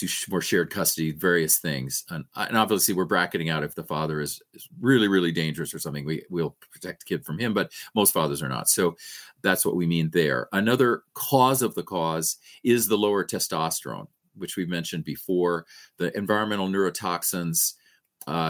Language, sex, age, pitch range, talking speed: English, male, 40-59, 80-95 Hz, 180 wpm